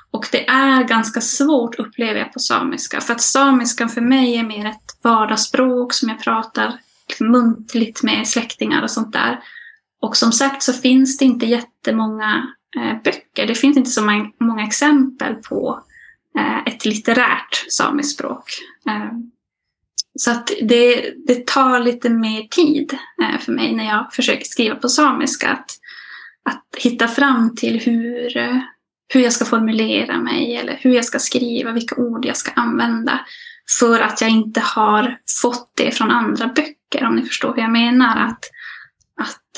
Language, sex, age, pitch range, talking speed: Swedish, female, 10-29, 230-275 Hz, 155 wpm